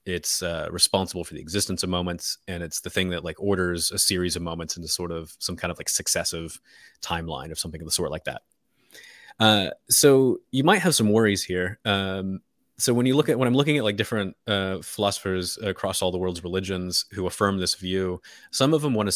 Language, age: English, 30-49